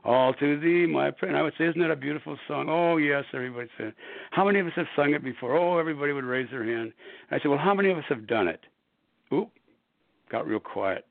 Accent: American